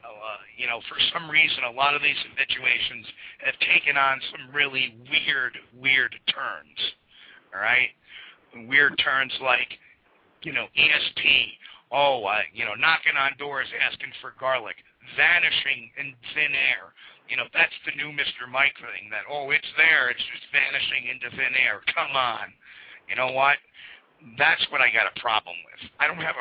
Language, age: English, 50-69